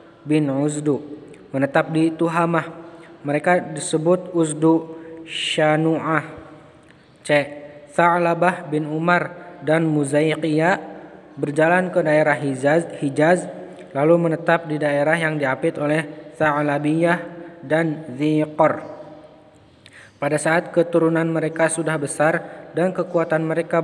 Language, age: Indonesian, 20-39